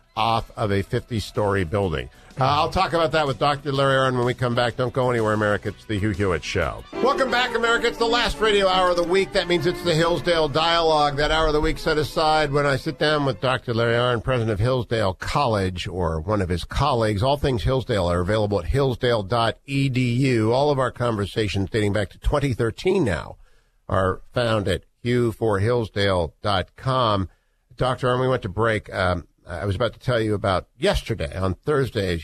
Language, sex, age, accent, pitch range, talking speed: English, male, 50-69, American, 95-130 Hz, 195 wpm